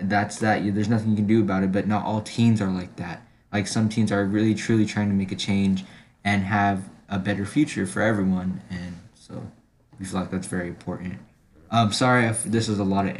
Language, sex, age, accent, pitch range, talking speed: English, male, 10-29, American, 95-110 Hz, 225 wpm